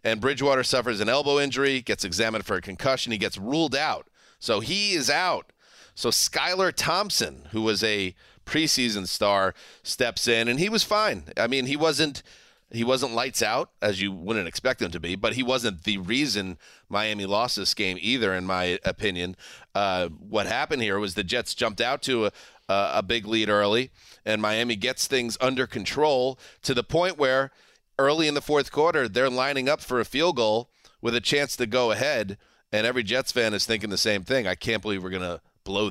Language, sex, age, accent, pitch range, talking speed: English, male, 30-49, American, 100-130 Hz, 200 wpm